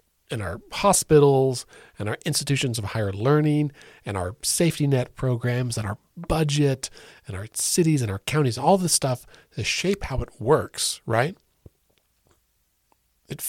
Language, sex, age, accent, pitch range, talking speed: English, male, 40-59, American, 105-145 Hz, 145 wpm